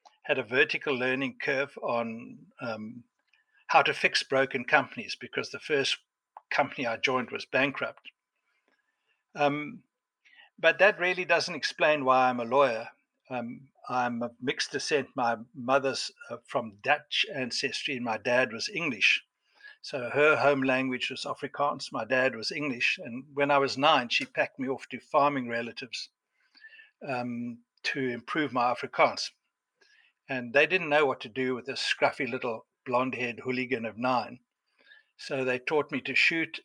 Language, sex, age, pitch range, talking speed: English, male, 60-79, 125-180 Hz, 155 wpm